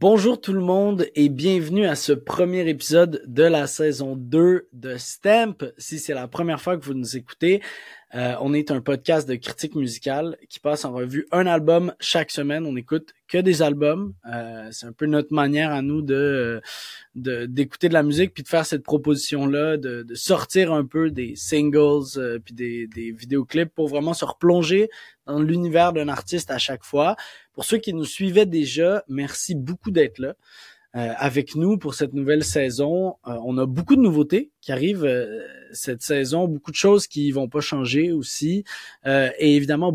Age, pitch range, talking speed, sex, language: 20-39, 135-175 Hz, 190 wpm, male, French